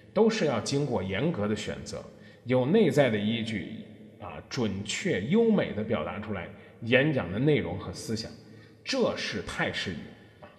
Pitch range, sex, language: 105-150 Hz, male, Chinese